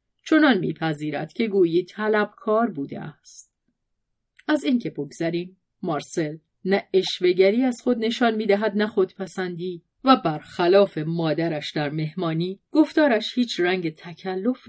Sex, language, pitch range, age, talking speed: female, Persian, 165-215 Hz, 30-49, 120 wpm